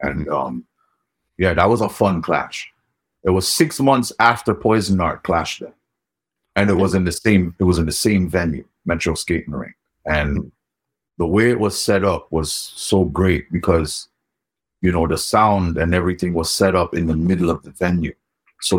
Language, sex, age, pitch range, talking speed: English, male, 50-69, 80-100 Hz, 190 wpm